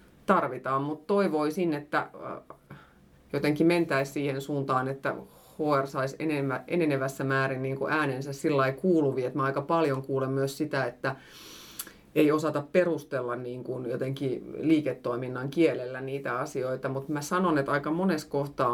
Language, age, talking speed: Finnish, 30-49, 130 wpm